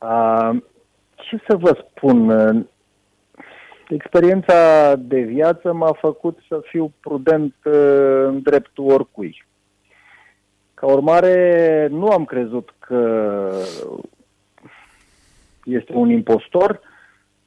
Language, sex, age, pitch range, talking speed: Romanian, male, 40-59, 125-175 Hz, 80 wpm